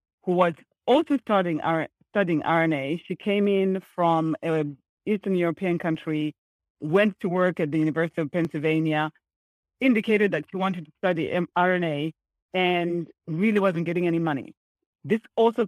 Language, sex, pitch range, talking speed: English, female, 160-190 Hz, 145 wpm